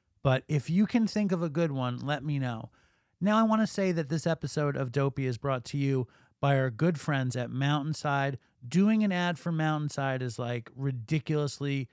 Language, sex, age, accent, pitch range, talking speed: English, male, 30-49, American, 135-170 Hz, 200 wpm